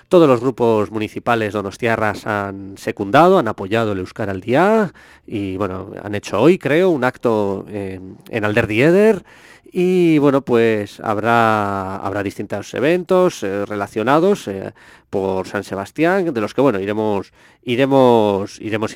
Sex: male